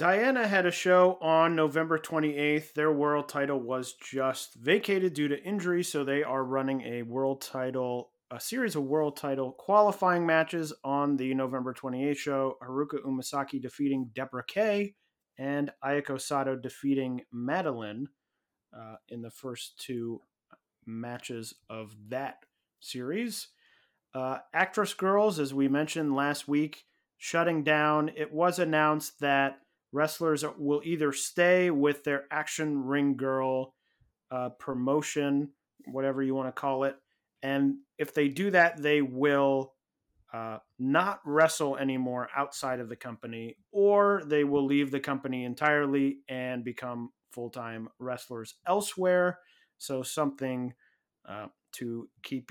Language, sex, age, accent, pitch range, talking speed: English, male, 30-49, American, 130-155 Hz, 135 wpm